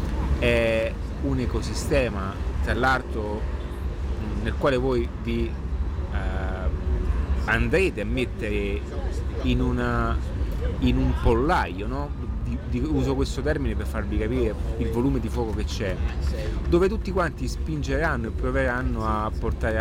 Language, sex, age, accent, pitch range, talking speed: Italian, male, 30-49, native, 75-115 Hz, 125 wpm